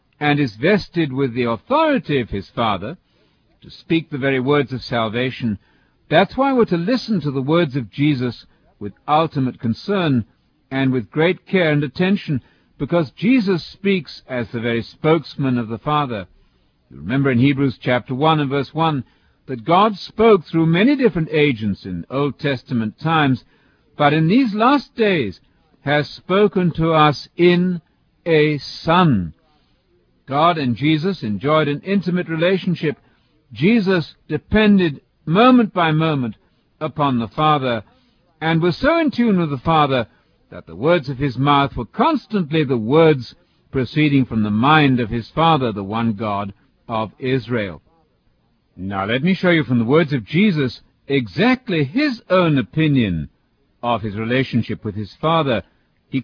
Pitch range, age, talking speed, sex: 120-170 Hz, 60-79, 155 wpm, male